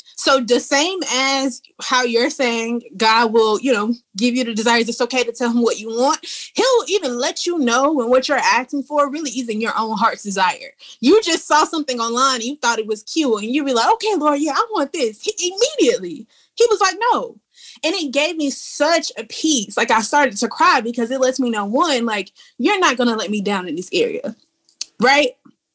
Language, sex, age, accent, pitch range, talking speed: English, female, 20-39, American, 245-345 Hz, 220 wpm